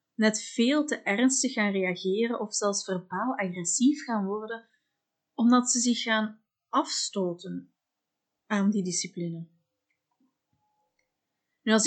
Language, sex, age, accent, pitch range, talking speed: Dutch, female, 30-49, Dutch, 195-240 Hz, 105 wpm